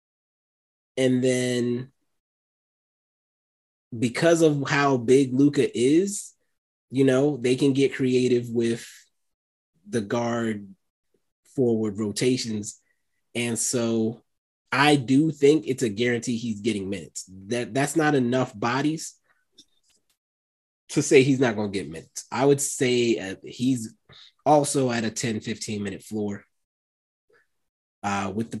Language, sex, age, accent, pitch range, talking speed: English, male, 20-39, American, 110-140 Hz, 120 wpm